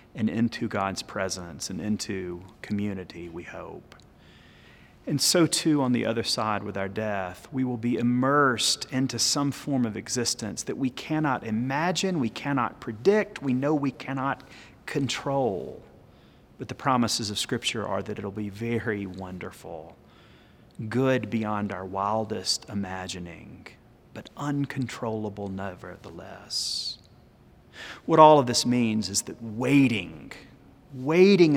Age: 30-49